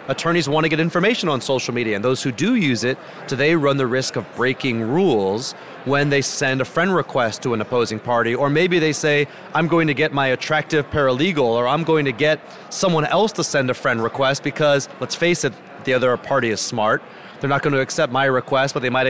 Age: 30-49